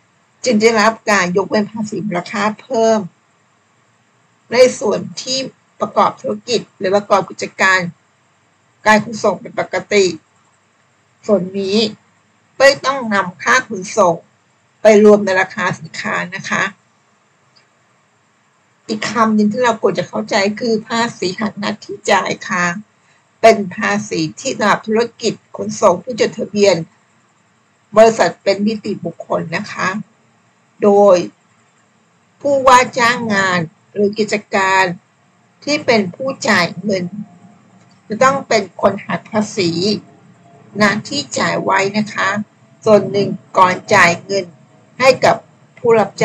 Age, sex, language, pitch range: 60-79, female, Thai, 185-220 Hz